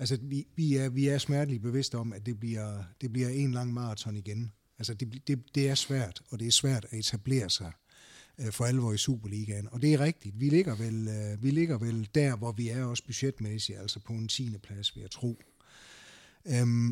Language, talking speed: Danish, 220 wpm